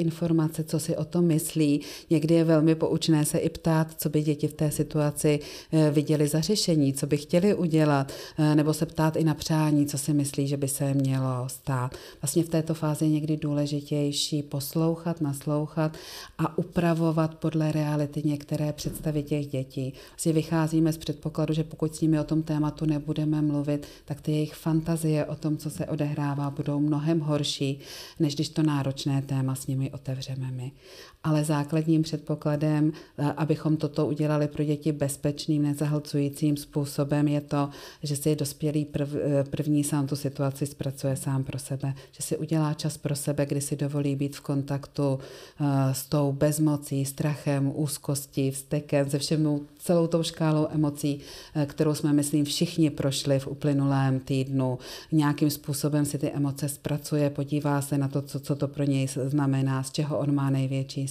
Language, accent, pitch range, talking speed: Czech, native, 145-155 Hz, 165 wpm